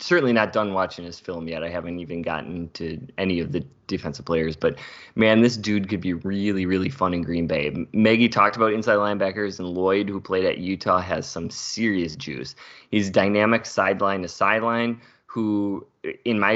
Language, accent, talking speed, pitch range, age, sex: English, American, 190 wpm, 90-110 Hz, 20-39, male